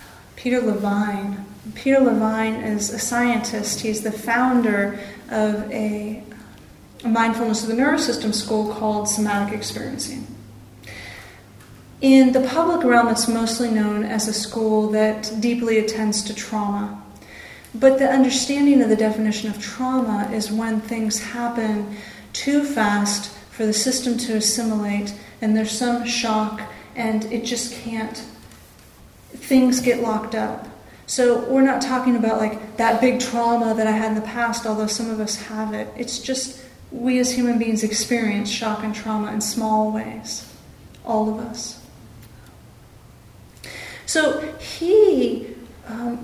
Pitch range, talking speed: 215-250 Hz, 140 wpm